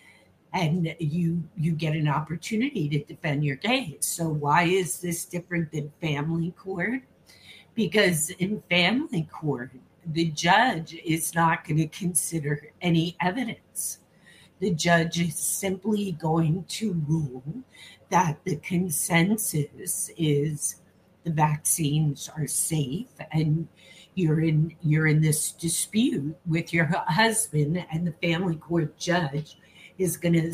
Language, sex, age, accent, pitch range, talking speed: English, female, 50-69, American, 155-180 Hz, 125 wpm